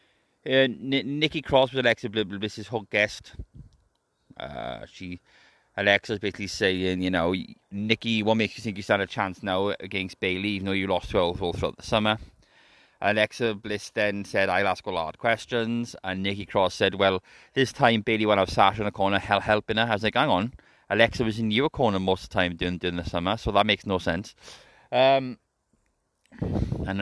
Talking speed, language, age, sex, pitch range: 200 wpm, English, 30-49, male, 95-115 Hz